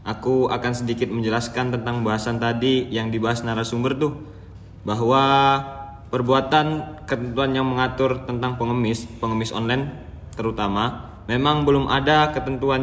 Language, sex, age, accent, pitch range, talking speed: Indonesian, male, 20-39, native, 110-130 Hz, 115 wpm